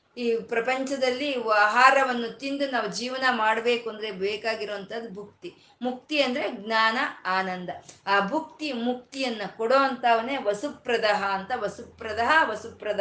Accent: native